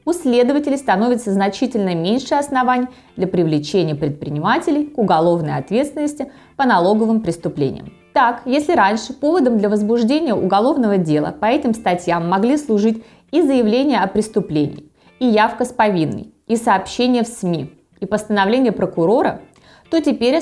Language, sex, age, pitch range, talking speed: Russian, female, 20-39, 170-250 Hz, 130 wpm